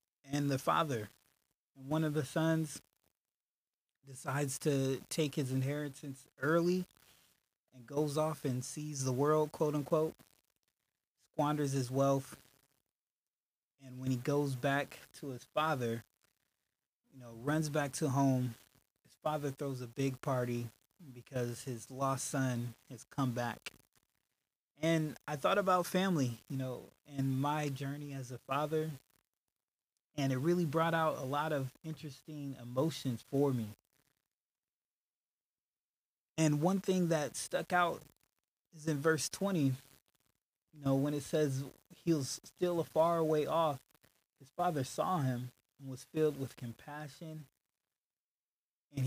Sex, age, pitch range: male, 20-39, 130-155 Hz